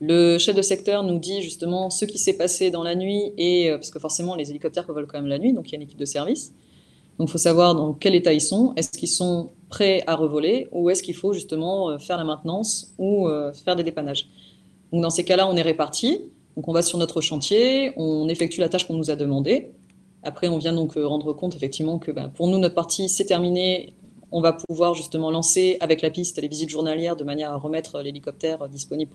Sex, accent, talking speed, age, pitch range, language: female, French, 235 wpm, 20-39, 155-185 Hz, French